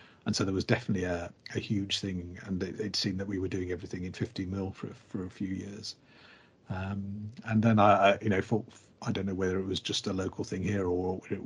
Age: 50-69